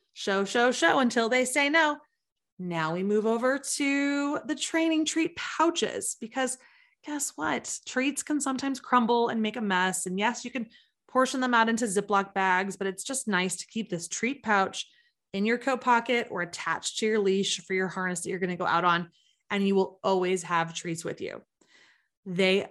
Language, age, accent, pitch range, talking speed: English, 20-39, American, 185-250 Hz, 195 wpm